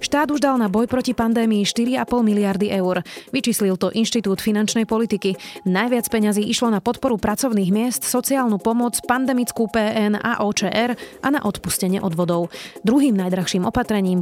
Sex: female